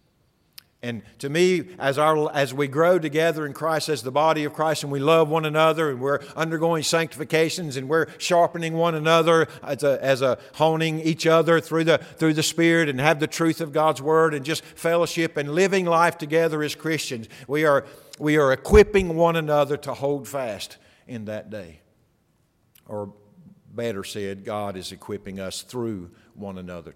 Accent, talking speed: American, 180 wpm